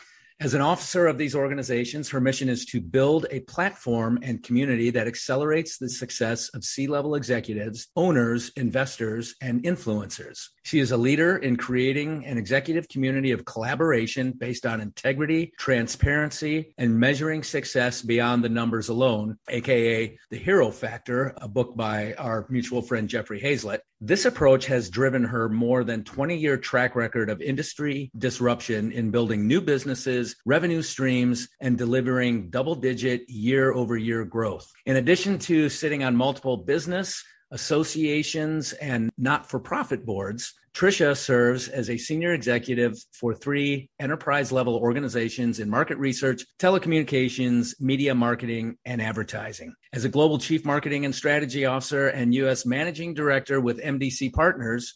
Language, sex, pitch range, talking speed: English, male, 120-145 Hz, 140 wpm